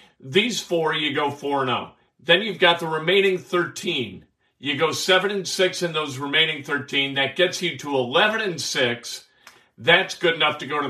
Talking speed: 195 wpm